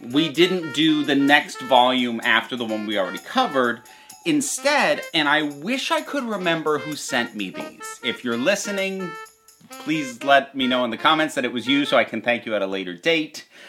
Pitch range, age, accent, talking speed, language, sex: 115-185 Hz, 30-49, American, 200 wpm, English, male